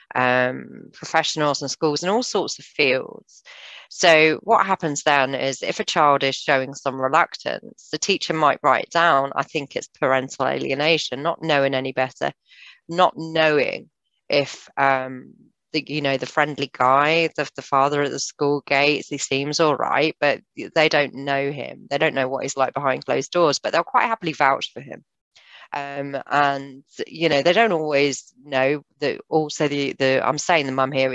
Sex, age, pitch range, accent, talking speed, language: female, 30-49, 130-150 Hz, British, 180 wpm, English